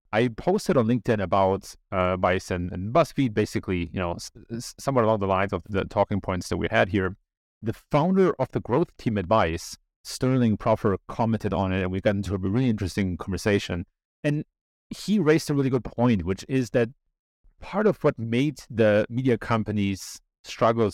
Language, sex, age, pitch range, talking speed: English, male, 30-49, 95-130 Hz, 180 wpm